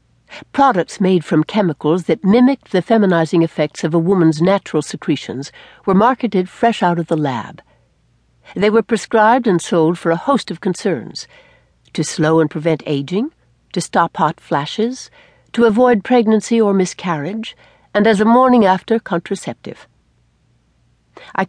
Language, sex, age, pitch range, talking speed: English, female, 60-79, 165-225 Hz, 145 wpm